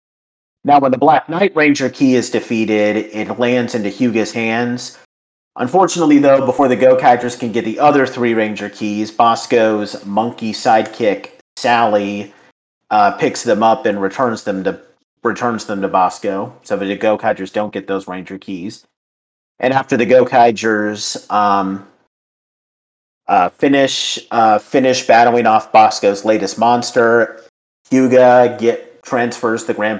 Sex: male